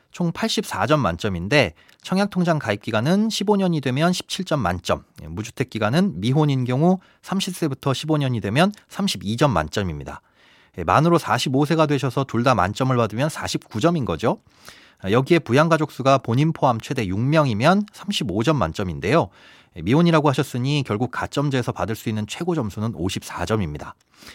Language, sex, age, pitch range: Korean, male, 30-49, 105-160 Hz